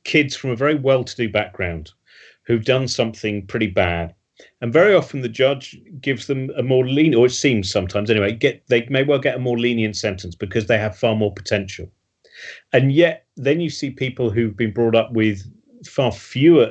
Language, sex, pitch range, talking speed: English, male, 105-145 Hz, 195 wpm